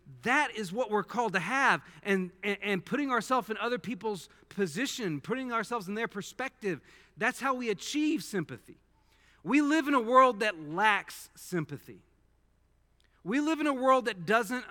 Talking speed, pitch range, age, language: 165 wpm, 185-245 Hz, 40-59, English